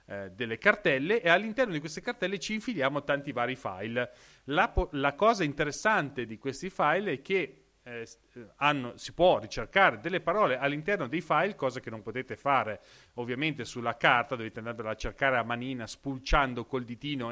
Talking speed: 170 wpm